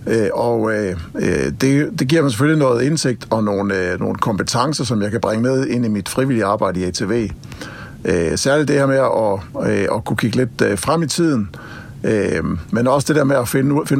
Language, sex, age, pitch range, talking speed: Danish, male, 60-79, 105-140 Hz, 185 wpm